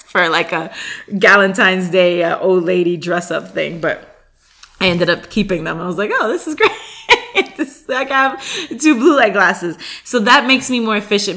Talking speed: 205 wpm